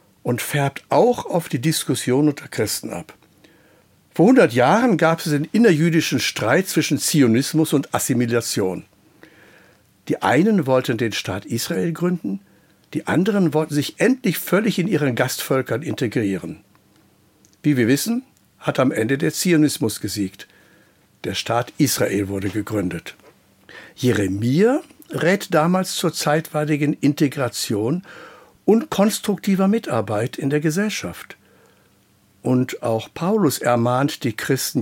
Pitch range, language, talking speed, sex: 115-165 Hz, German, 120 wpm, male